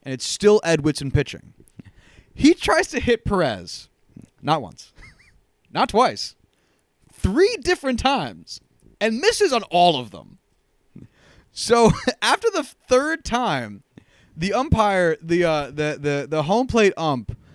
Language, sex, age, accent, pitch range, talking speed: English, male, 20-39, American, 125-195 Hz, 135 wpm